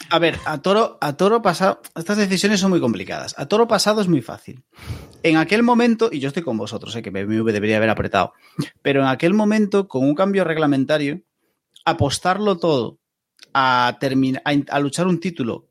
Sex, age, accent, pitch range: male, 30-49, Spanish, 115-165 Hz